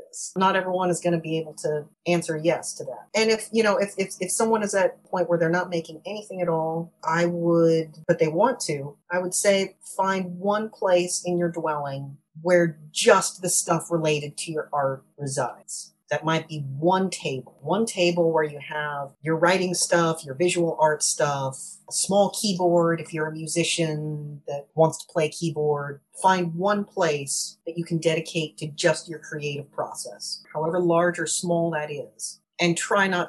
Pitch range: 150-185 Hz